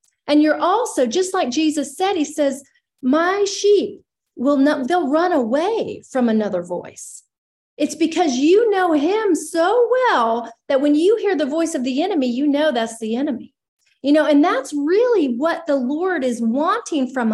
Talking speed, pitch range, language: 175 wpm, 235-330 Hz, English